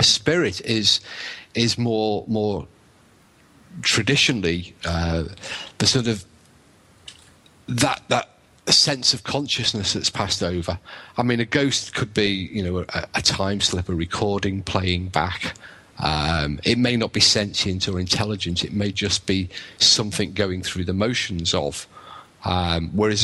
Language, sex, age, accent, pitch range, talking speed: English, male, 40-59, British, 95-115 Hz, 140 wpm